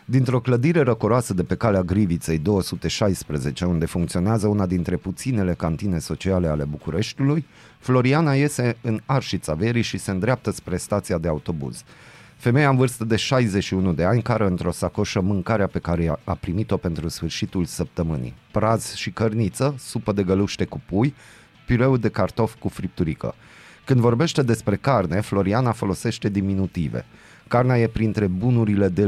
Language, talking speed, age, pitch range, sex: Romanian, 145 wpm, 30-49, 90-120 Hz, male